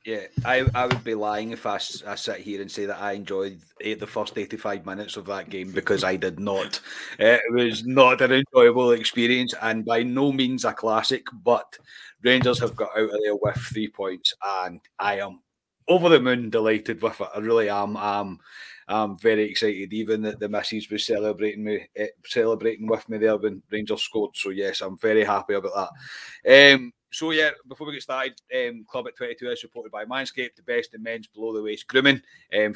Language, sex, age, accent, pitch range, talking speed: English, male, 30-49, British, 105-130 Hz, 200 wpm